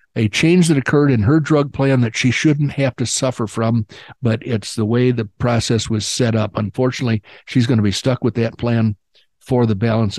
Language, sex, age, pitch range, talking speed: English, male, 60-79, 115-155 Hz, 210 wpm